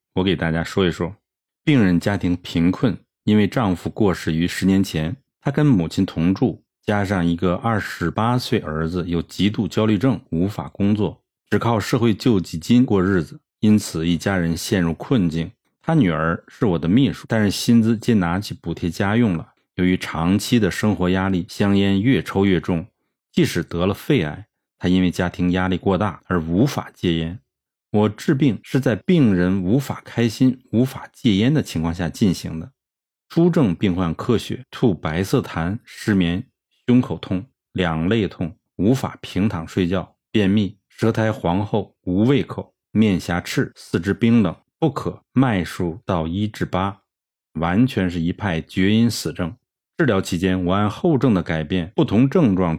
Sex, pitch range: male, 90-115 Hz